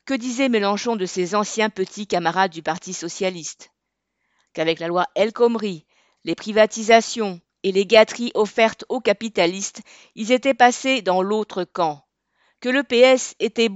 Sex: female